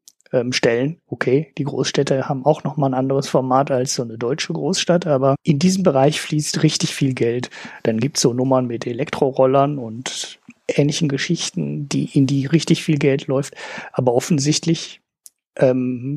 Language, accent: German, German